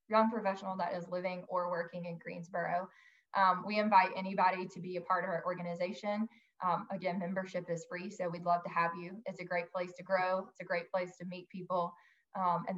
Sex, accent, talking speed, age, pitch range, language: female, American, 215 wpm, 20-39, 180-215 Hz, English